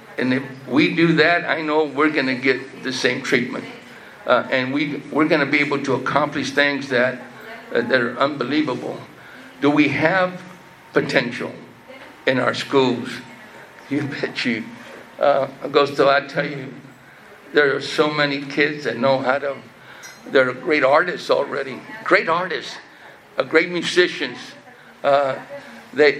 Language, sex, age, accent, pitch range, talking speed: English, male, 60-79, American, 125-150 Hz, 145 wpm